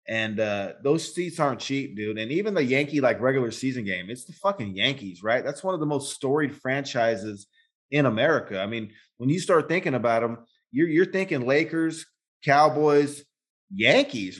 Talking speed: 180 wpm